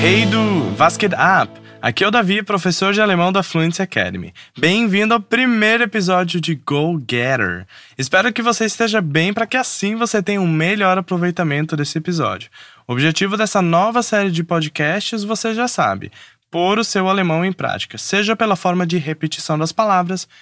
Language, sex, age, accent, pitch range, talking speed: Portuguese, male, 20-39, Brazilian, 160-215 Hz, 170 wpm